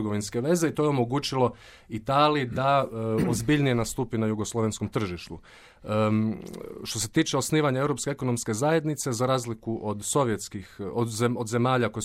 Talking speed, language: 150 wpm, Croatian